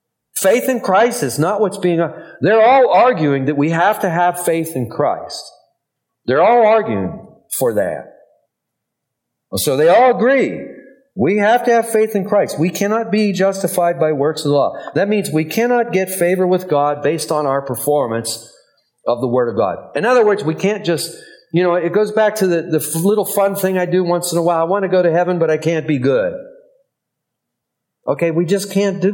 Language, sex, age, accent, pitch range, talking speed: English, male, 40-59, American, 160-215 Hz, 205 wpm